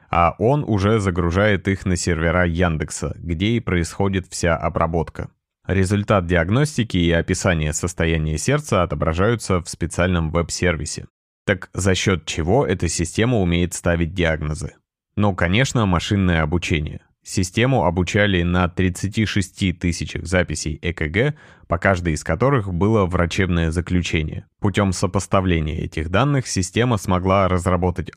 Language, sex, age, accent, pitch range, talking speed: Russian, male, 20-39, native, 85-100 Hz, 120 wpm